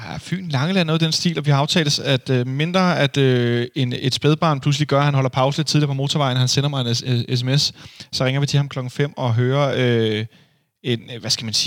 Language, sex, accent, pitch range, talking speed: Danish, male, native, 115-145 Hz, 215 wpm